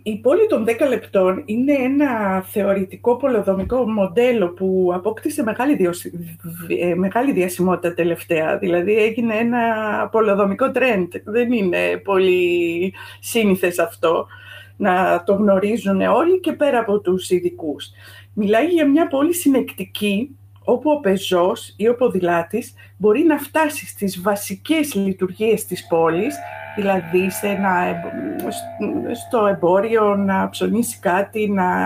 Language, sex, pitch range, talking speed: Greek, female, 180-245 Hz, 115 wpm